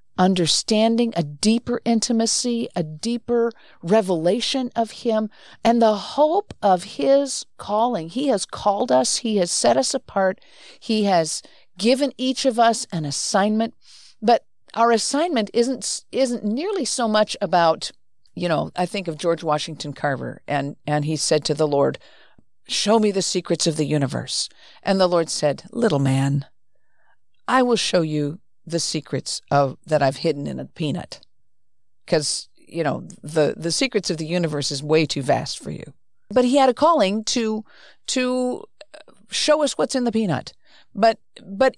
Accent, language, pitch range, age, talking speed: American, English, 165-240 Hz, 50-69, 160 wpm